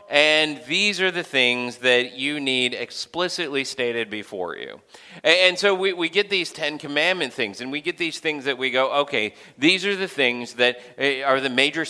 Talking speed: 195 wpm